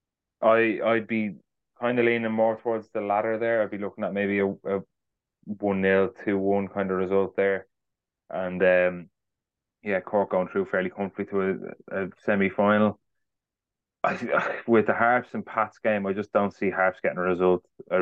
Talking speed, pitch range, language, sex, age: 180 wpm, 95-105 Hz, English, male, 20-39